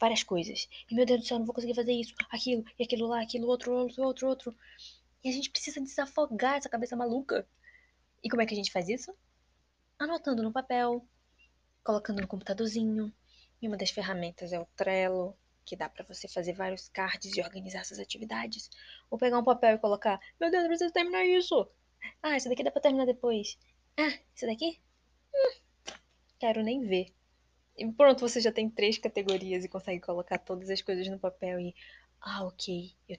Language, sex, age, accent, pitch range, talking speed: Portuguese, female, 10-29, Brazilian, 185-245 Hz, 195 wpm